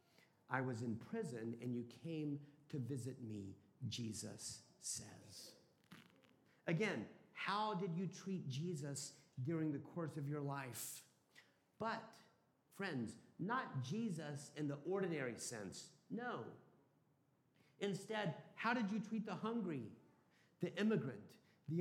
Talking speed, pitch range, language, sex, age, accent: 120 wpm, 145-180 Hz, English, male, 50-69, American